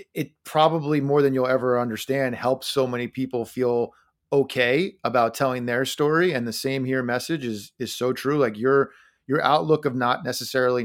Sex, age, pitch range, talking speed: male, 30-49, 125-140 Hz, 185 wpm